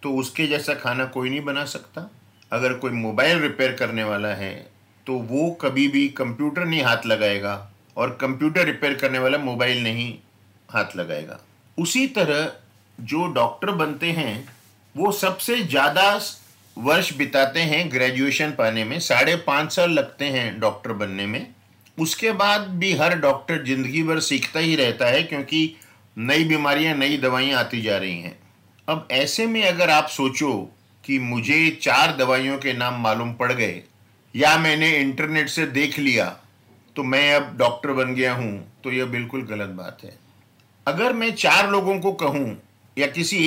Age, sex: 50-69, male